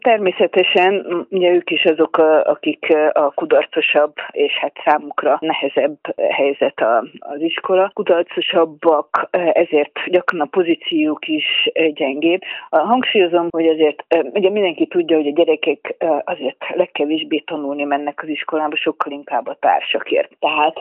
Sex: female